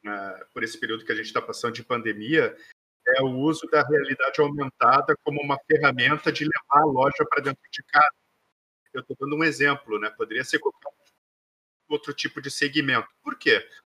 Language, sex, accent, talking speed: Portuguese, male, Brazilian, 180 wpm